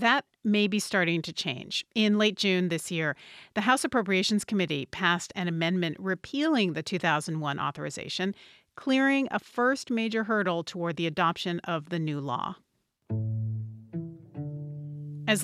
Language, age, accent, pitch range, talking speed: English, 40-59, American, 160-215 Hz, 135 wpm